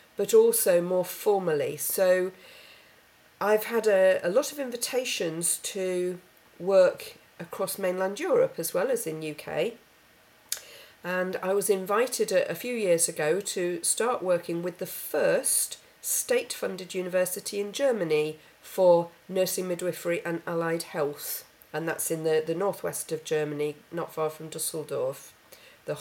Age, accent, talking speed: 40-59, British, 140 wpm